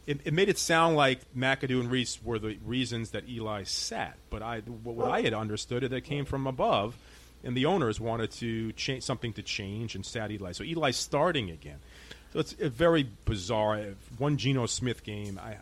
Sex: male